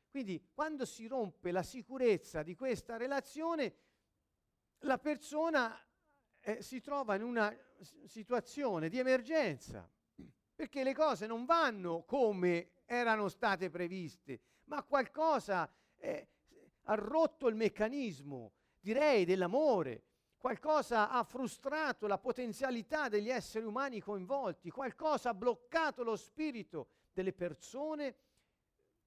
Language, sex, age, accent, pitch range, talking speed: Italian, male, 50-69, native, 180-260 Hz, 110 wpm